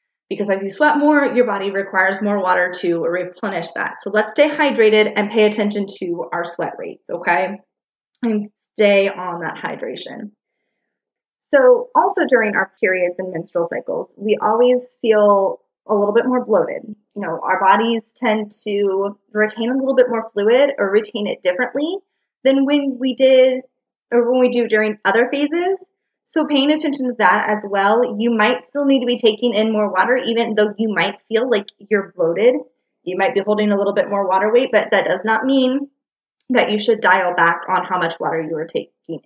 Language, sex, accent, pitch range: English, female, American, 200-250 Hz